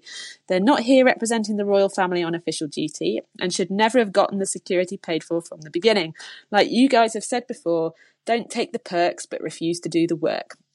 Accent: British